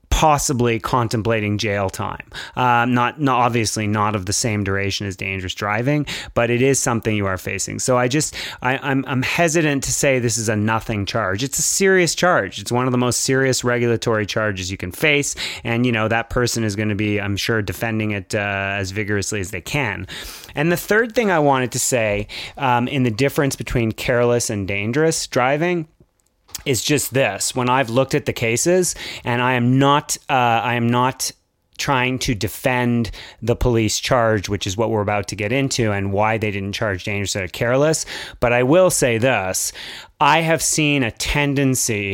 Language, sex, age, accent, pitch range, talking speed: English, male, 30-49, American, 105-135 Hz, 195 wpm